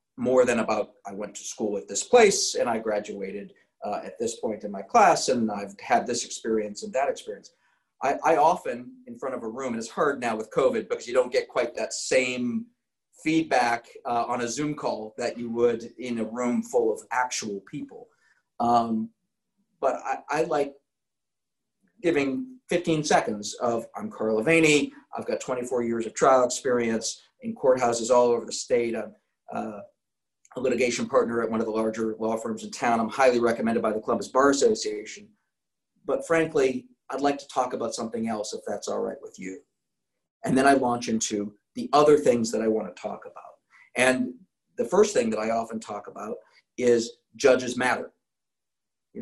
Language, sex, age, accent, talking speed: English, male, 40-59, American, 185 wpm